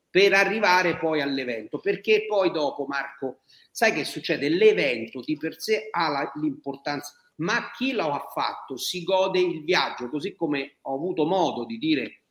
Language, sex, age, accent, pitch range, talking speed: Italian, male, 40-59, native, 135-195 Hz, 165 wpm